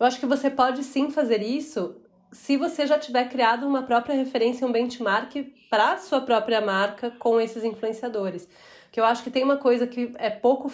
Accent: Brazilian